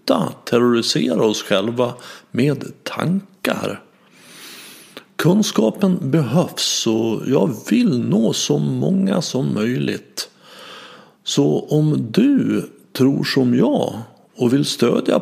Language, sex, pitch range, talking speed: Swedish, male, 110-175 Hz, 95 wpm